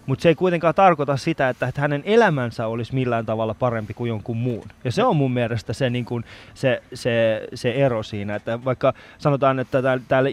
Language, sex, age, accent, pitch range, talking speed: Finnish, male, 20-39, native, 120-145 Hz, 205 wpm